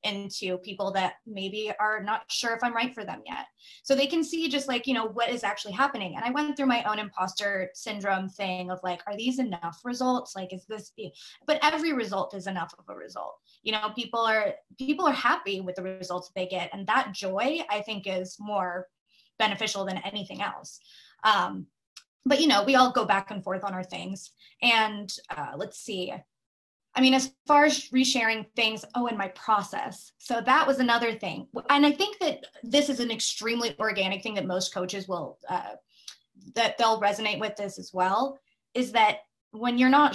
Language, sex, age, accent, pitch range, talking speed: English, female, 20-39, American, 195-255 Hz, 200 wpm